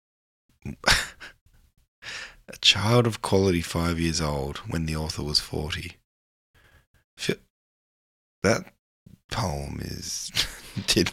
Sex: male